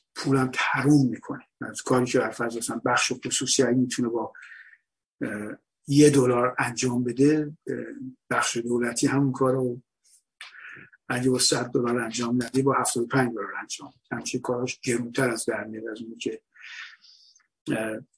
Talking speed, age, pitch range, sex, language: 125 wpm, 50-69, 120-135 Hz, male, Persian